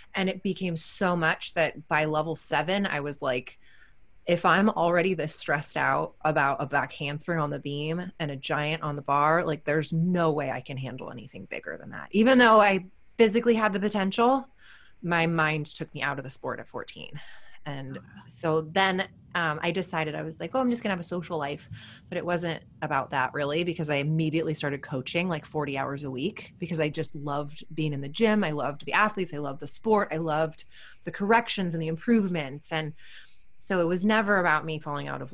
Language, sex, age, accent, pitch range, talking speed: English, female, 20-39, American, 150-190 Hz, 210 wpm